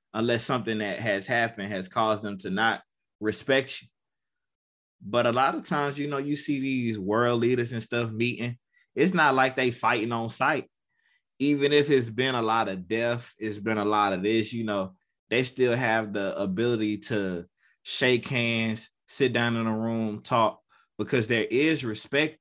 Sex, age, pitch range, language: male, 20-39, 105-130 Hz, English